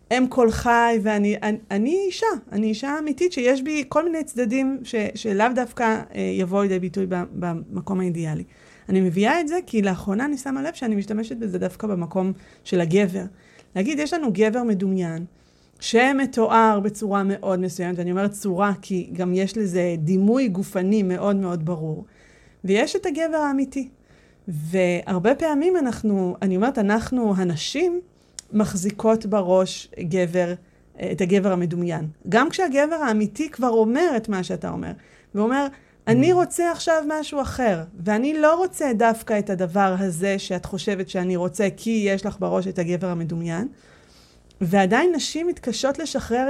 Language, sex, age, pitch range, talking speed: Hebrew, female, 30-49, 185-255 Hz, 145 wpm